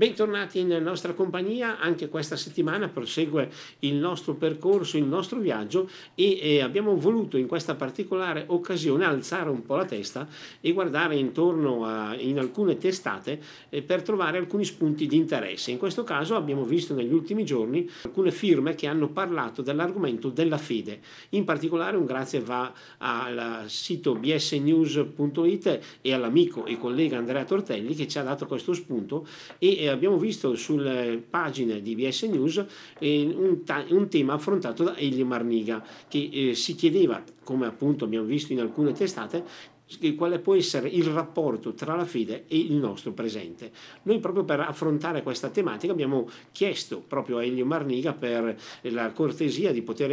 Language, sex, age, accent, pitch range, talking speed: Italian, male, 50-69, native, 130-175 Hz, 155 wpm